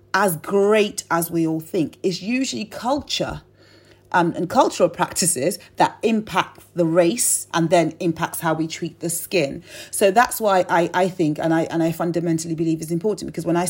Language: English